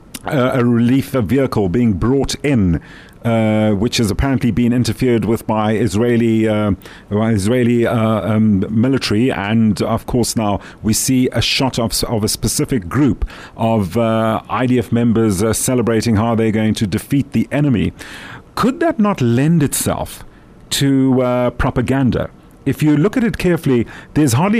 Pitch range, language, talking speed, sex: 115-145 Hz, English, 160 wpm, male